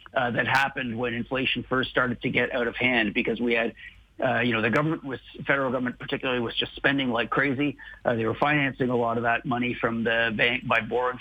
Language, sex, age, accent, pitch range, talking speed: English, male, 50-69, American, 125-150 Hz, 230 wpm